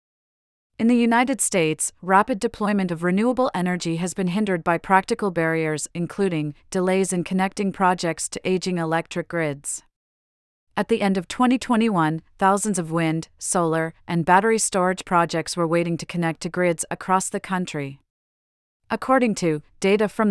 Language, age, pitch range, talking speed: English, 40-59, 165-200 Hz, 150 wpm